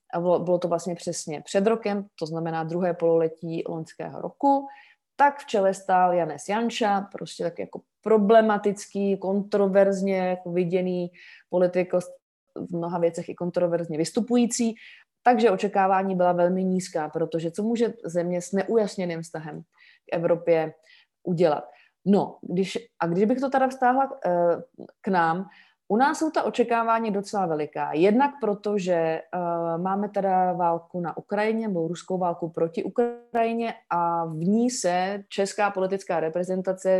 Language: Czech